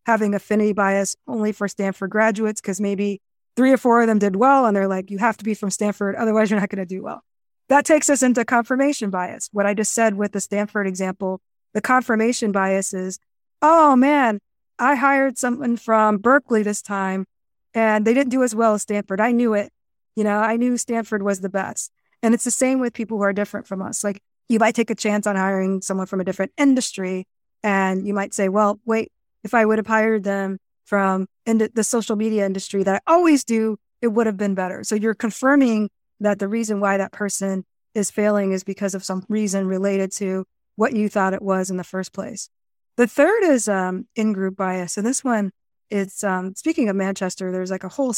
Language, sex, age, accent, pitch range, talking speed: English, female, 20-39, American, 195-230 Hz, 220 wpm